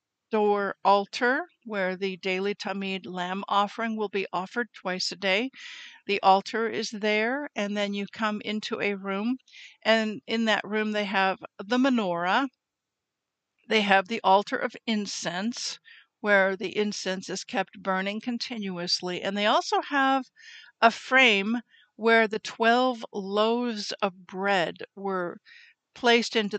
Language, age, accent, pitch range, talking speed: English, 50-69, American, 195-245 Hz, 140 wpm